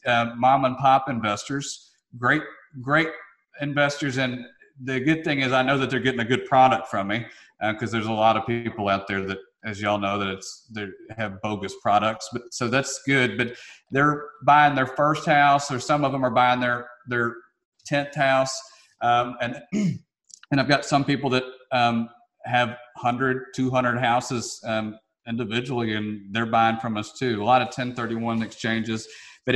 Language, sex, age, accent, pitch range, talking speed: English, male, 40-59, American, 105-130 Hz, 185 wpm